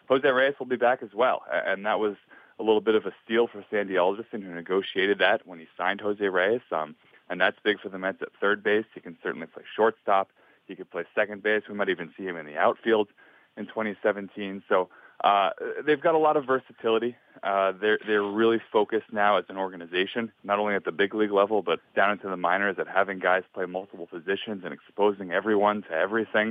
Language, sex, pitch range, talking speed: English, male, 95-115 Hz, 220 wpm